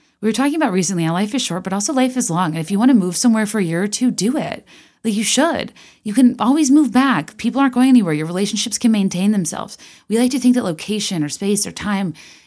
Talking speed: 265 wpm